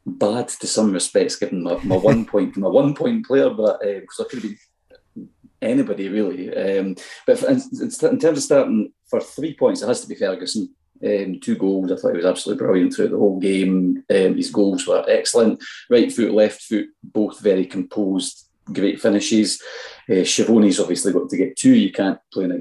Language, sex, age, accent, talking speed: English, male, 30-49, British, 200 wpm